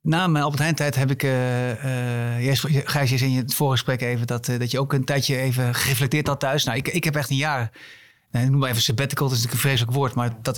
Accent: Dutch